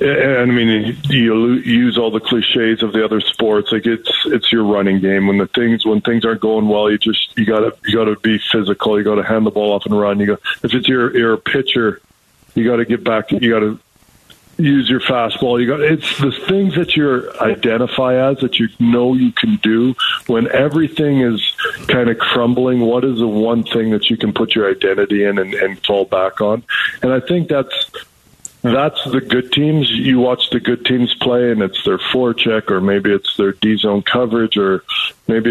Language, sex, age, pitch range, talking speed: English, male, 50-69, 105-125 Hz, 215 wpm